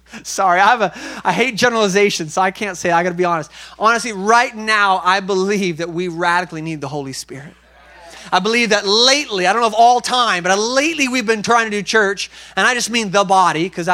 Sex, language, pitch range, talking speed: male, English, 170-230 Hz, 235 wpm